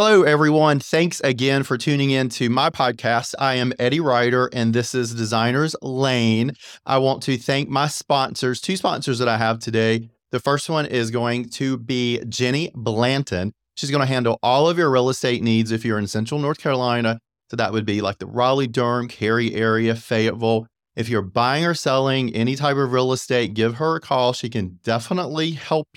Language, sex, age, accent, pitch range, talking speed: English, male, 30-49, American, 115-135 Hz, 195 wpm